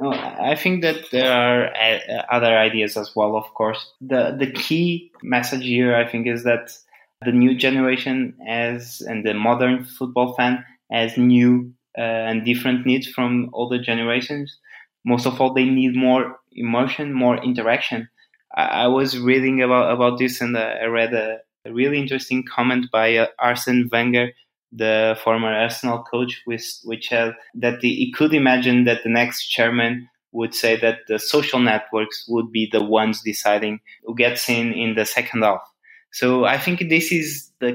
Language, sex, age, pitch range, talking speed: German, male, 20-39, 115-130 Hz, 170 wpm